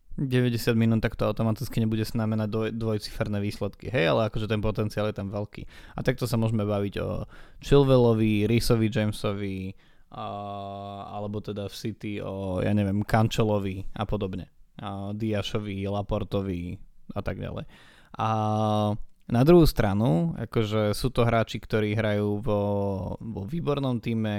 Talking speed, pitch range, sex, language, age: 145 wpm, 105-120 Hz, male, Slovak, 20-39